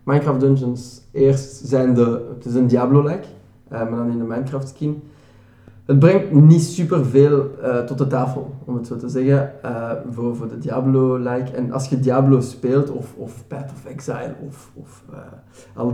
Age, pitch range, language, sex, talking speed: 20-39, 120-140 Hz, Dutch, male, 180 wpm